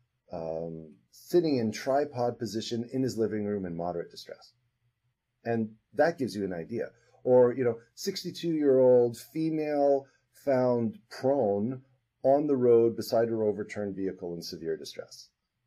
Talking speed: 135 wpm